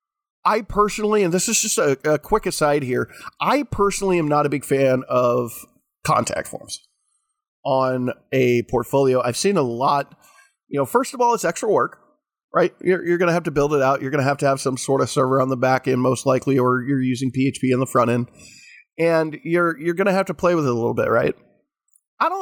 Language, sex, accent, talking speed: English, male, American, 225 wpm